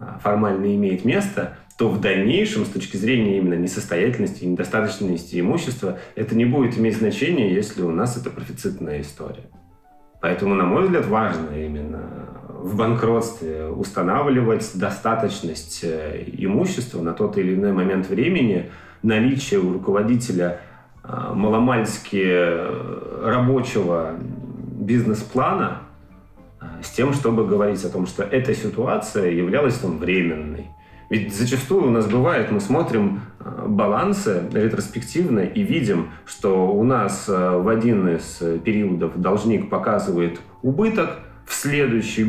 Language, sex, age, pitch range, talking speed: Russian, male, 30-49, 85-120 Hz, 115 wpm